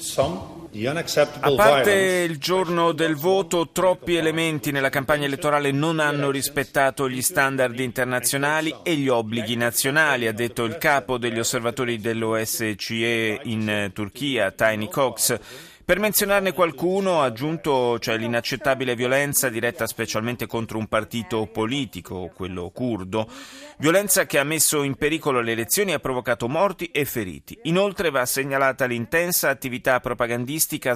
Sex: male